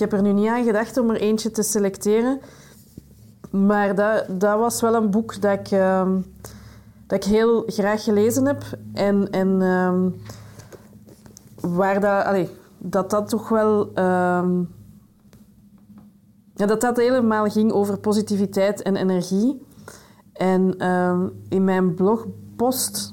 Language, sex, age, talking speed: Dutch, female, 20-39, 135 wpm